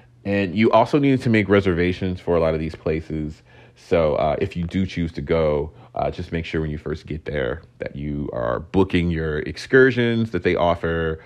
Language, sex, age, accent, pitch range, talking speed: English, male, 30-49, American, 80-110 Hz, 210 wpm